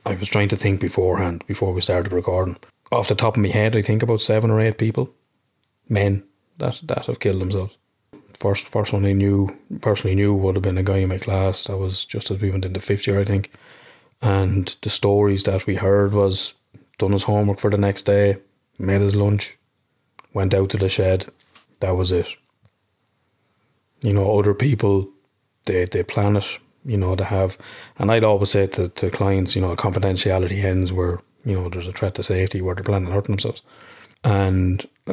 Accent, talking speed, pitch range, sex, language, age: Irish, 200 wpm, 95-105 Hz, male, English, 20-39